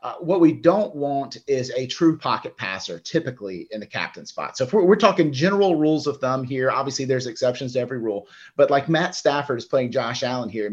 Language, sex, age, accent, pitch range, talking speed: English, male, 30-49, American, 130-165 Hz, 225 wpm